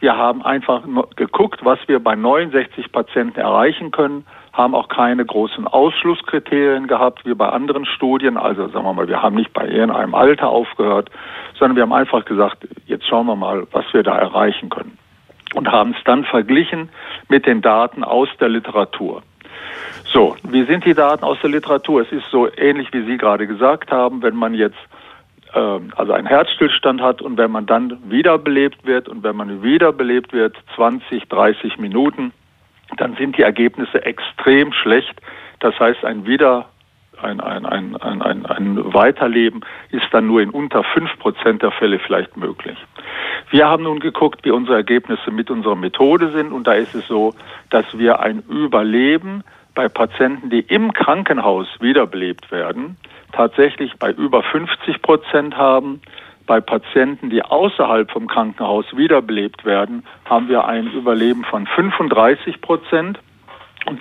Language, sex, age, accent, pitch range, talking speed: German, male, 50-69, German, 115-150 Hz, 155 wpm